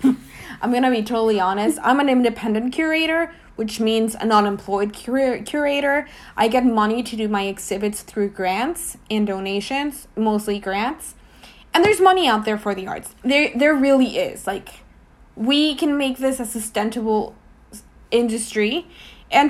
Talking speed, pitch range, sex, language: 150 wpm, 210-270 Hz, female, English